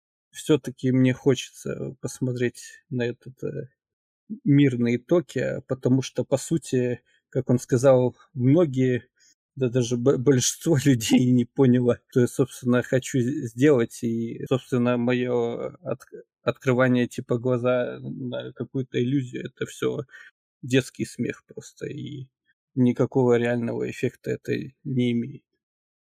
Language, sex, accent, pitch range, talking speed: Russian, male, native, 120-135 Hz, 110 wpm